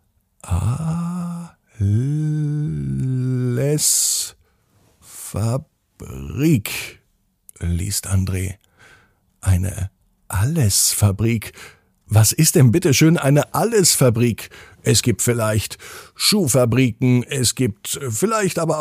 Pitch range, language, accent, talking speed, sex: 100-150 Hz, German, German, 60 wpm, male